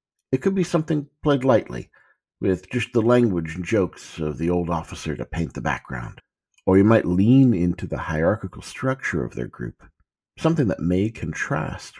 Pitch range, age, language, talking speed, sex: 80-115 Hz, 50-69, English, 175 wpm, male